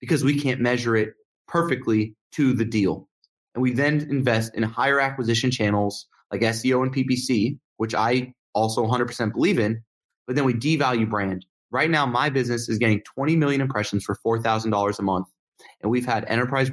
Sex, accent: male, American